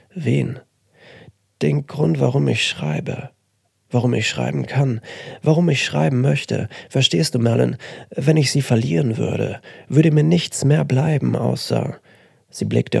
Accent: German